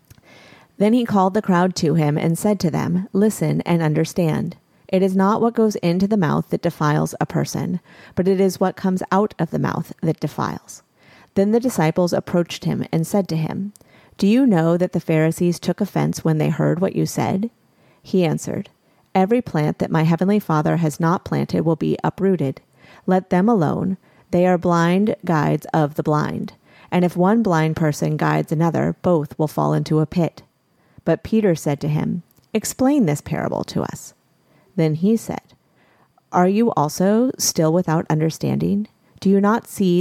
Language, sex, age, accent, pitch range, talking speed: English, female, 30-49, American, 160-200 Hz, 180 wpm